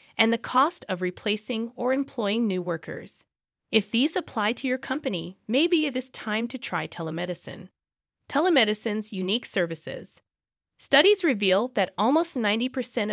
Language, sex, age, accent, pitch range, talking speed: English, female, 20-39, American, 200-265 Hz, 135 wpm